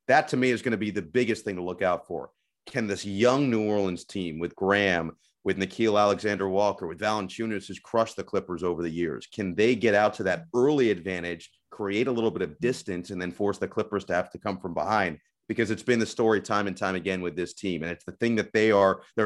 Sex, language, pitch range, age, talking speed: male, English, 95-115 Hz, 30-49, 245 wpm